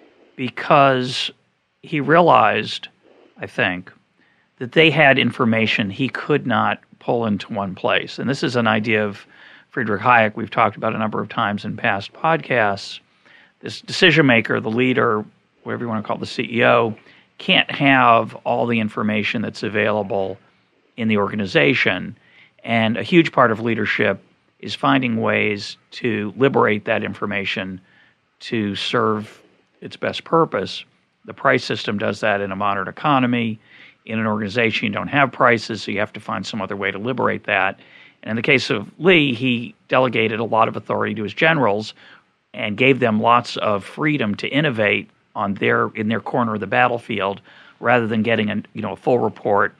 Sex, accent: male, American